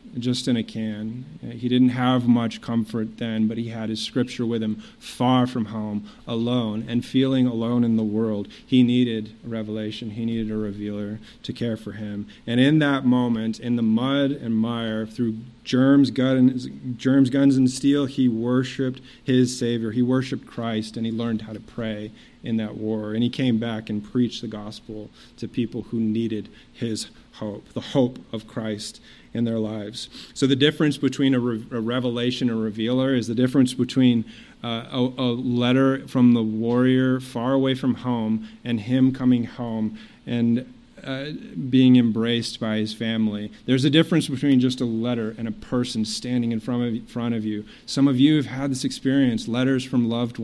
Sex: male